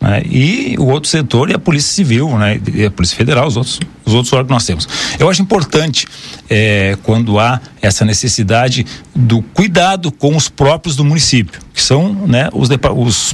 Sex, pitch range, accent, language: male, 120-175 Hz, Brazilian, Portuguese